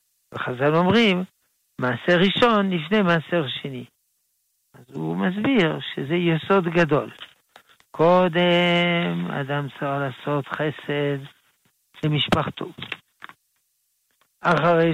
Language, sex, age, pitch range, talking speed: Hebrew, male, 60-79, 150-195 Hz, 80 wpm